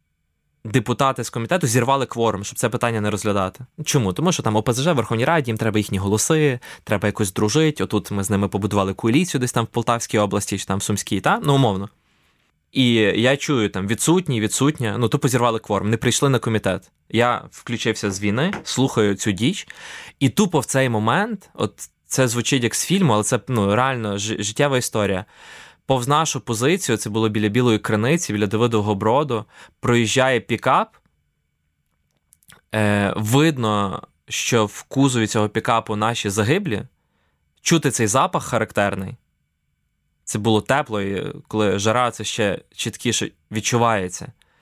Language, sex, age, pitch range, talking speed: Ukrainian, male, 20-39, 105-130 Hz, 155 wpm